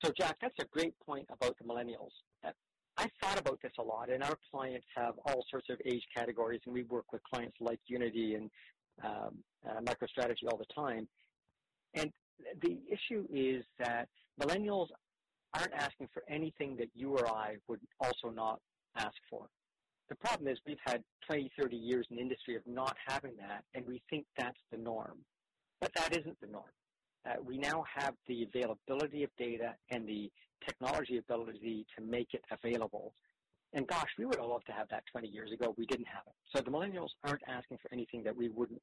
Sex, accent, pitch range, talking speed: male, American, 120-140 Hz, 195 wpm